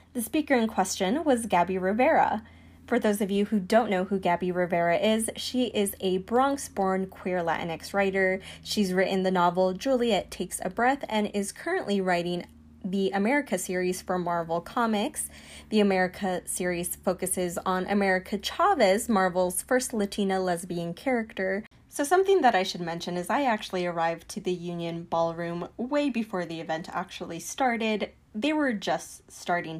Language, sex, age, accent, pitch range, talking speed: English, female, 10-29, American, 175-210 Hz, 160 wpm